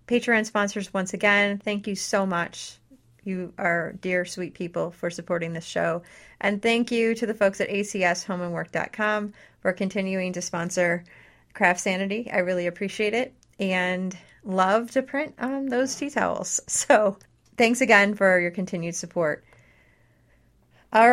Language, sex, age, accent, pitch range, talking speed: English, female, 30-49, American, 175-210 Hz, 145 wpm